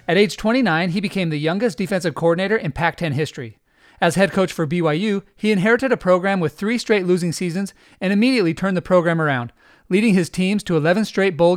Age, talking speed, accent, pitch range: 30-49, 200 wpm, American, 160-205 Hz